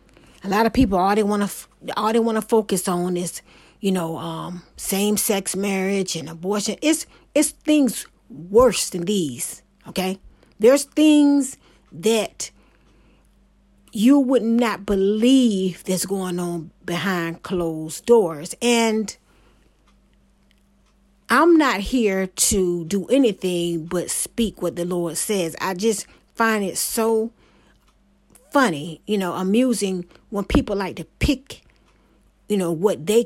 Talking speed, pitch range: 135 wpm, 175-220 Hz